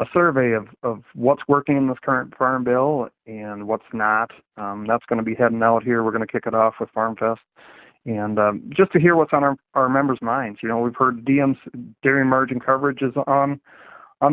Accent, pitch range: American, 115-130 Hz